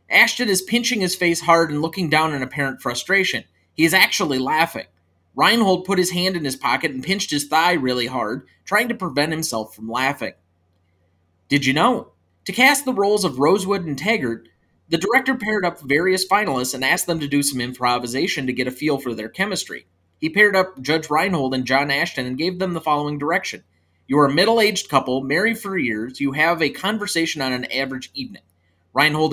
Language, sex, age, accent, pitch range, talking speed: English, male, 30-49, American, 125-175 Hz, 200 wpm